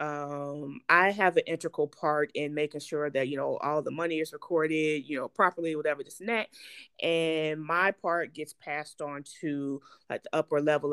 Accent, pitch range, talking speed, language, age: American, 155-230 Hz, 190 wpm, English, 30-49